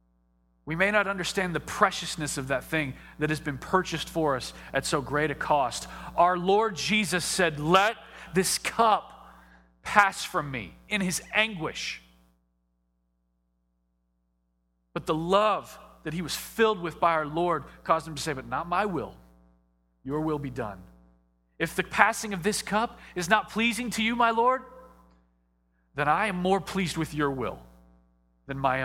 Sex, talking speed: male, 165 wpm